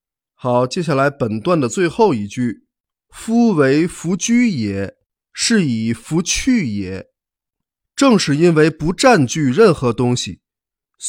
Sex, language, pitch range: male, Chinese, 120-195 Hz